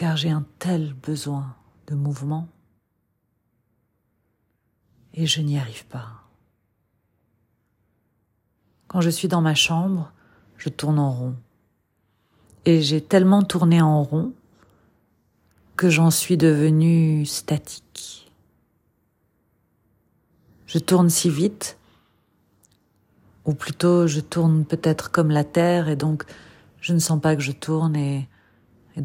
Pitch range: 110-155 Hz